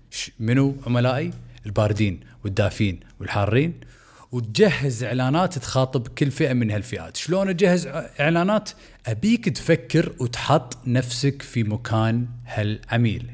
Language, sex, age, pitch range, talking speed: Arabic, male, 40-59, 115-145 Hz, 100 wpm